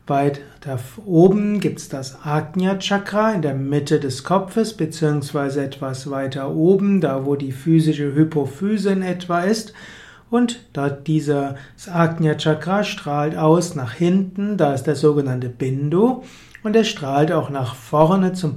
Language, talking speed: German, 140 wpm